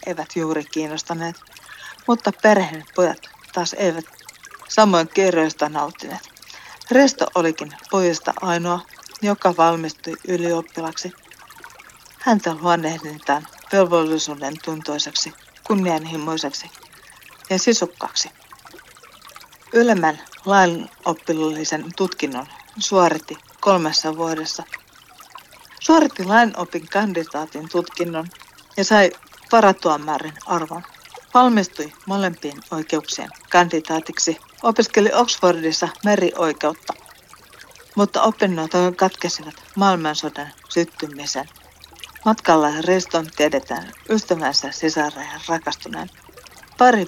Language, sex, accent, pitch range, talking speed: Finnish, female, native, 155-195 Hz, 75 wpm